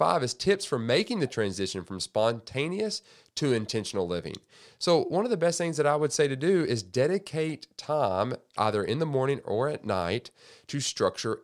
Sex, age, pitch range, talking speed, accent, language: male, 40-59, 95-140 Hz, 185 wpm, American, English